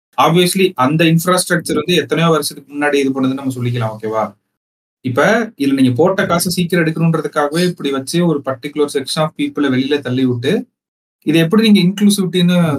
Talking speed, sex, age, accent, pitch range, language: 155 wpm, male, 30-49, native, 130-175 Hz, Tamil